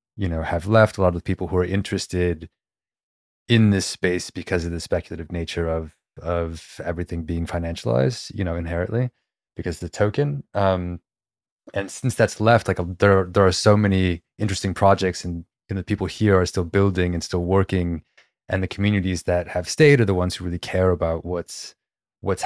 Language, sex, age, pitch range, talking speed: English, male, 20-39, 85-100 Hz, 185 wpm